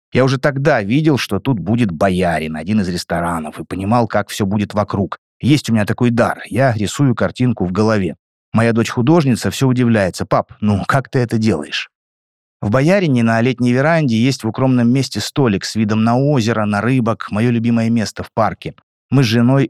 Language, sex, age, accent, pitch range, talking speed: Russian, male, 30-49, native, 105-130 Hz, 190 wpm